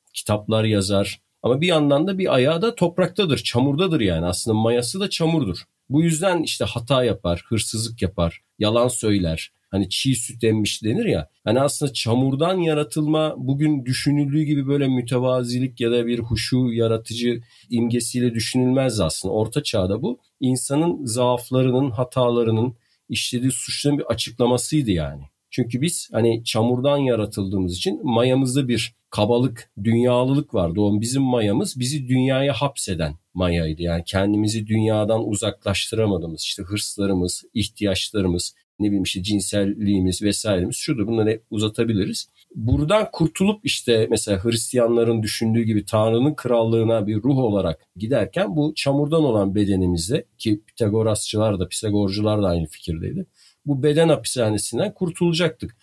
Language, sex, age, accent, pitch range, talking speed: Turkish, male, 40-59, native, 105-140 Hz, 130 wpm